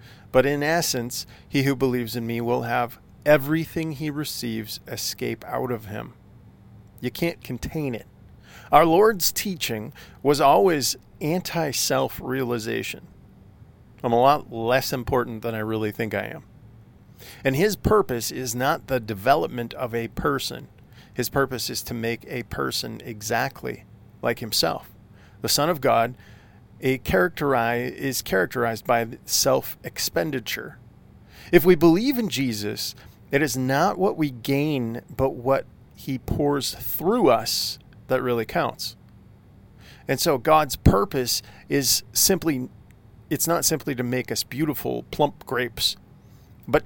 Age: 40-59